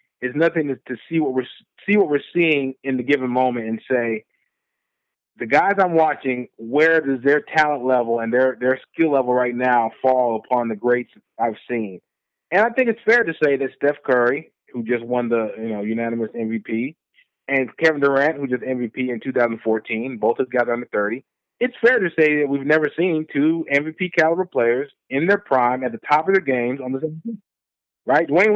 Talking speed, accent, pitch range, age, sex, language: 200 wpm, American, 125-160 Hz, 30-49, male, English